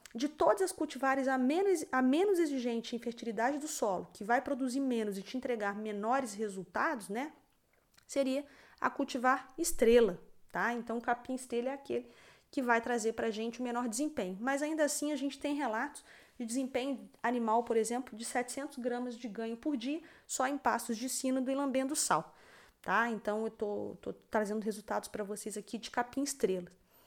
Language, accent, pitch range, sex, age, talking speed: Portuguese, Brazilian, 215-265 Hz, female, 20-39, 175 wpm